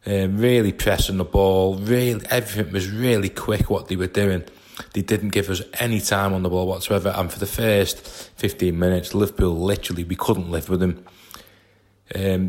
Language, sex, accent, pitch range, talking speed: English, male, British, 95-105 Hz, 185 wpm